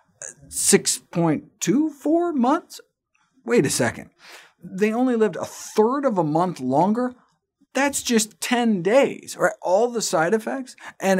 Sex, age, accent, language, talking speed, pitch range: male, 50-69, American, English, 130 wpm, 150-230 Hz